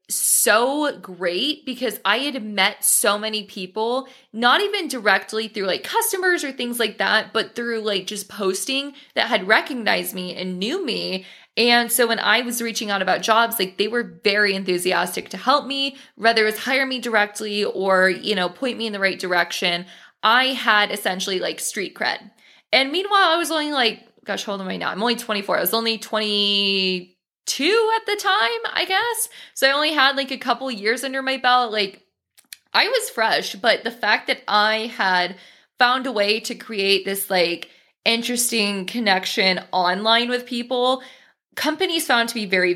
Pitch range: 190-255 Hz